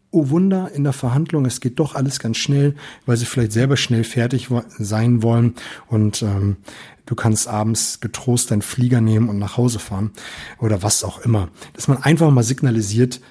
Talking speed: 185 wpm